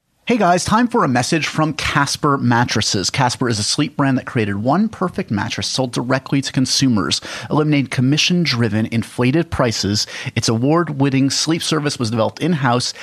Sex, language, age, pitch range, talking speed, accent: male, English, 30-49, 110-150 Hz, 155 wpm, American